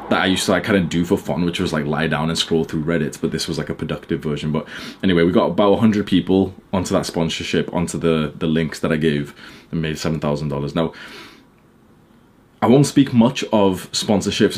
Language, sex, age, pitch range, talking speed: English, male, 20-39, 80-105 Hz, 220 wpm